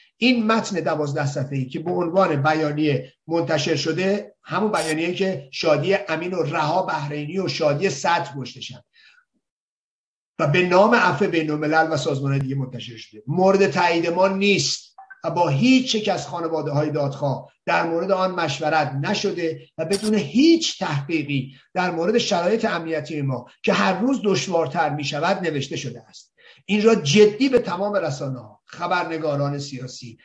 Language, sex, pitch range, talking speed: Persian, male, 150-205 Hz, 150 wpm